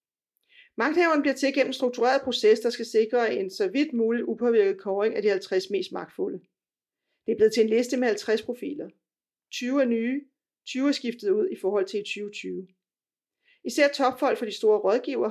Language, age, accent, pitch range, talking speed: Danish, 40-59, native, 215-280 Hz, 180 wpm